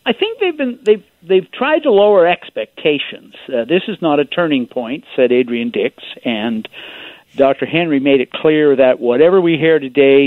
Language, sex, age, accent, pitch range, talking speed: English, male, 50-69, American, 120-170 Hz, 180 wpm